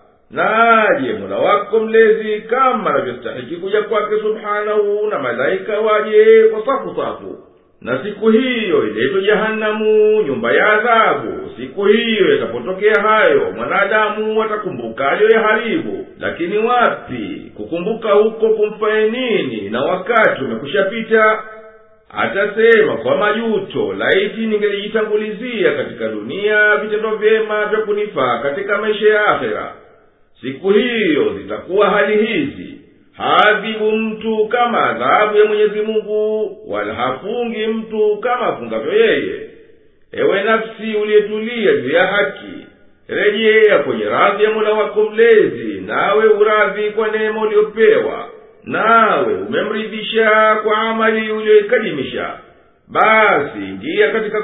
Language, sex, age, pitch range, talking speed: Swahili, male, 50-69, 210-230 Hz, 105 wpm